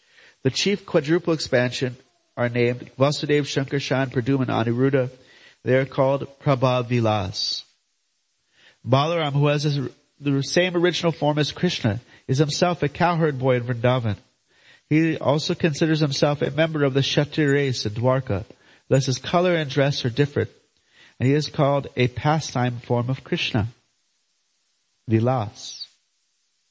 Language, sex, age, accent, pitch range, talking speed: English, male, 30-49, American, 125-160 Hz, 135 wpm